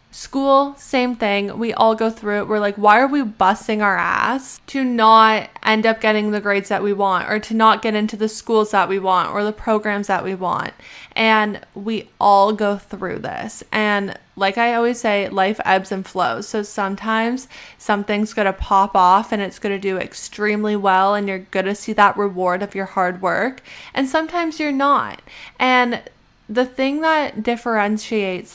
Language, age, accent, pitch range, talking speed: English, 10-29, American, 195-225 Hz, 190 wpm